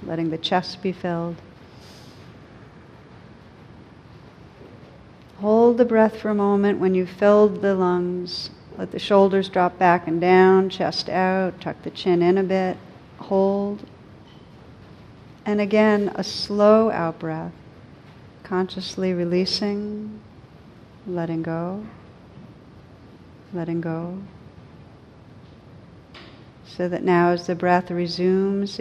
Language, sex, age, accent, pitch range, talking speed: English, female, 50-69, American, 170-195 Hz, 105 wpm